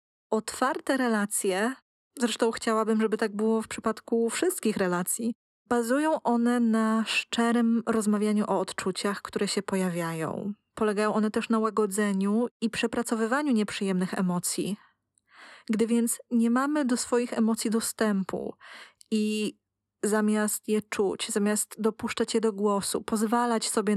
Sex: female